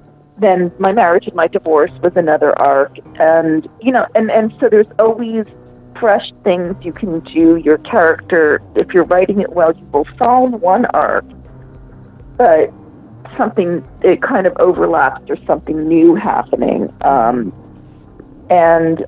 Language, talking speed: English, 145 wpm